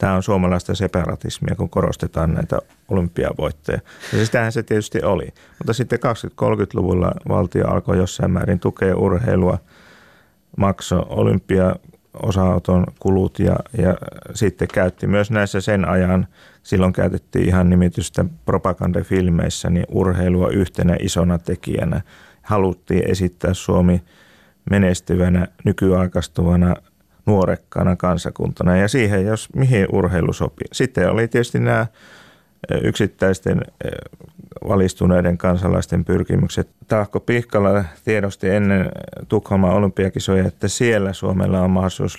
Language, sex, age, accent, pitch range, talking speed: Finnish, male, 30-49, native, 90-105 Hz, 105 wpm